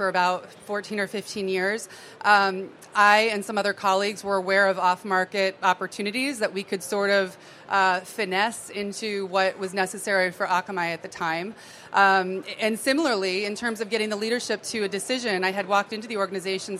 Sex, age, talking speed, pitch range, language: female, 30-49, 180 wpm, 190-225 Hz, English